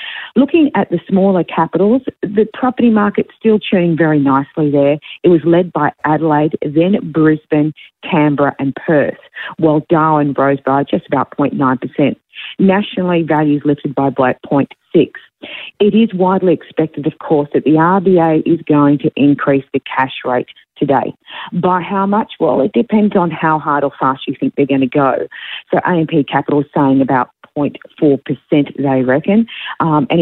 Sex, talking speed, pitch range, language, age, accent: female, 155 wpm, 140-185 Hz, English, 40-59, Australian